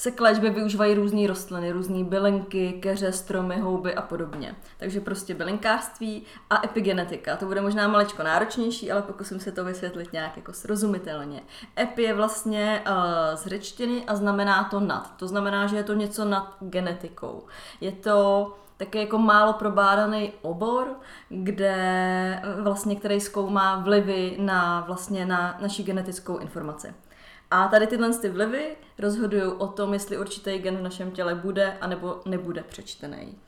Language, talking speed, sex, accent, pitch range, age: Czech, 150 wpm, female, native, 185-205 Hz, 20-39